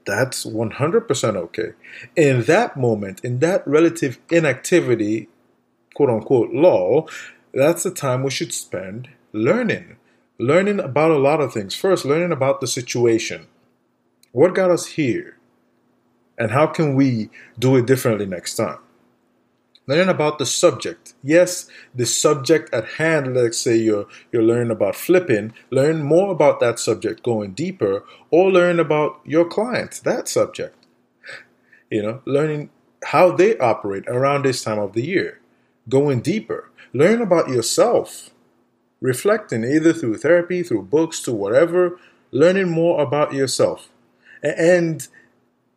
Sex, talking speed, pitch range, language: male, 135 wpm, 120-175 Hz, English